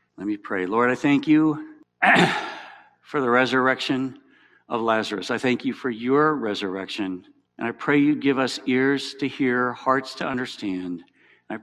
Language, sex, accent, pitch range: English, male, American, 110-150 Hz